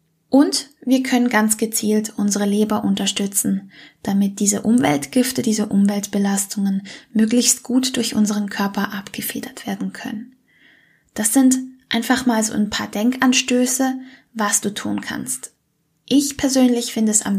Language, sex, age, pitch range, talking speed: German, female, 10-29, 200-250 Hz, 130 wpm